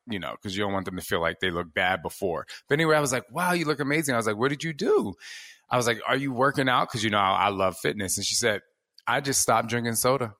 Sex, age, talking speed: male, 20-39, 300 wpm